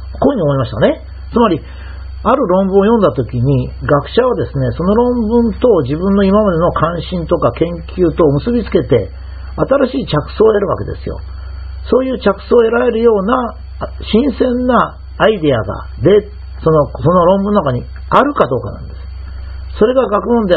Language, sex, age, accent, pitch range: Japanese, male, 50-69, native, 120-195 Hz